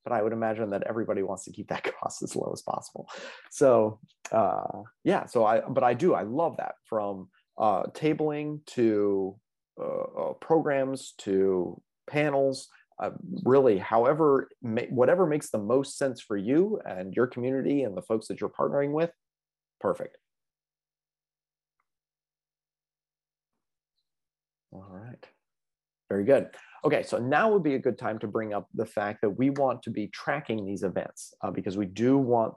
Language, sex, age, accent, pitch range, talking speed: English, male, 30-49, American, 105-135 Hz, 155 wpm